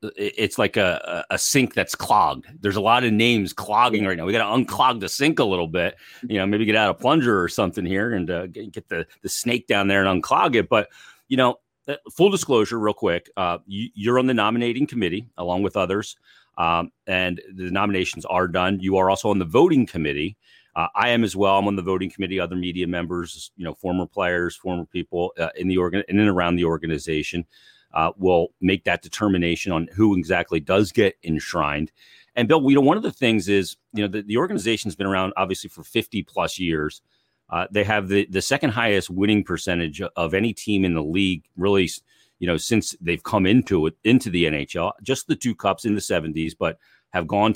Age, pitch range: 40-59, 85-105 Hz